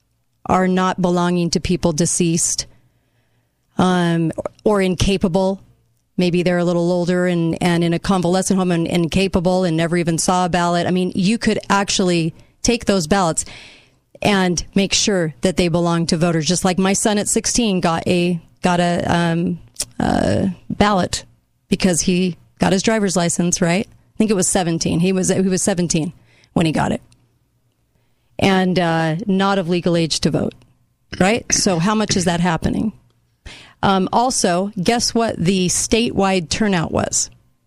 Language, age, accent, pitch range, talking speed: English, 40-59, American, 165-200 Hz, 160 wpm